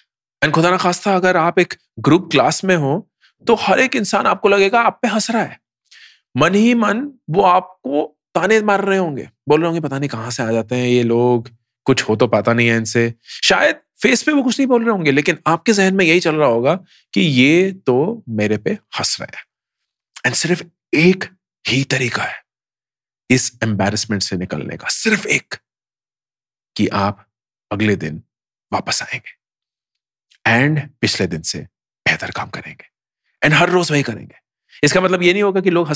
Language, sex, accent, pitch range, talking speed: English, male, Indian, 120-185 Hz, 160 wpm